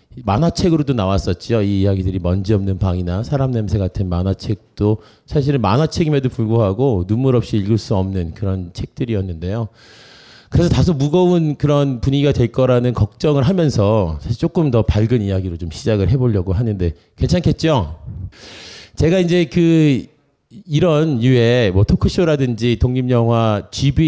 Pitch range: 95-140 Hz